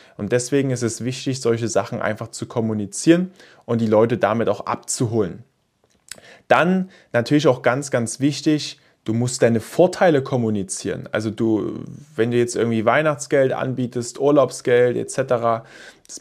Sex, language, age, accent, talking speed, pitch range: male, German, 20-39, German, 140 wpm, 120-165 Hz